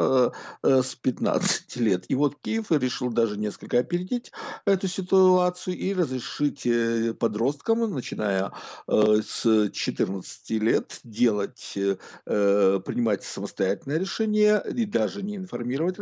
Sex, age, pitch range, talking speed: male, 50-69, 115-195 Hz, 100 wpm